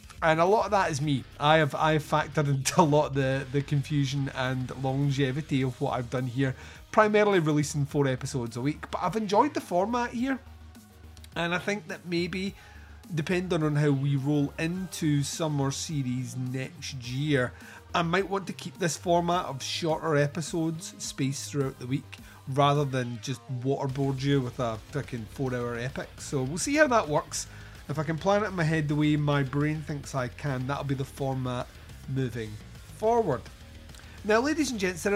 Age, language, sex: 30-49, English, male